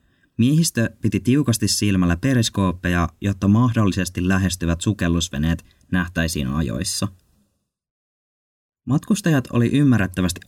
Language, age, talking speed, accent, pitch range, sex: Finnish, 20-39, 80 wpm, native, 90-115 Hz, male